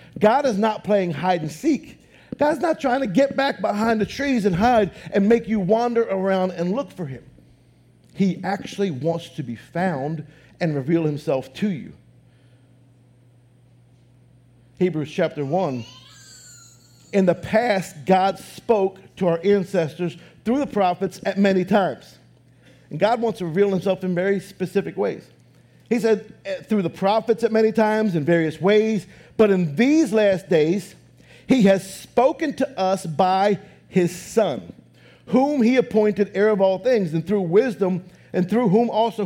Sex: male